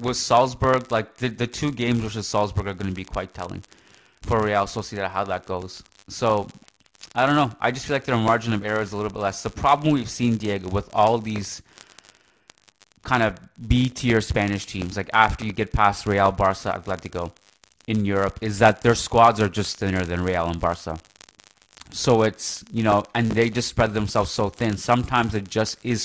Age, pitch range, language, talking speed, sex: 20-39, 95-115 Hz, English, 205 wpm, male